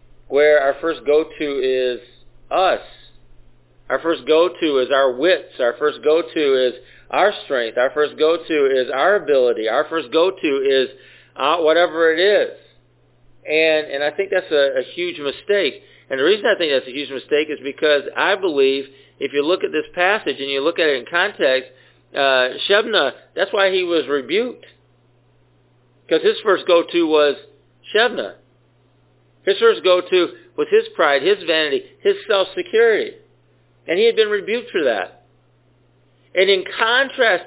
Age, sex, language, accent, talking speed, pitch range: 50-69, male, English, American, 160 wpm, 130-195 Hz